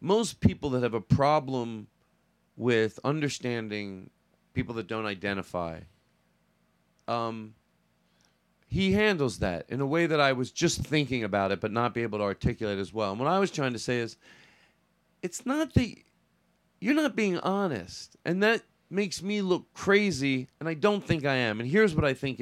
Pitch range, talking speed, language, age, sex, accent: 120-195 Hz, 175 wpm, English, 40-59, male, American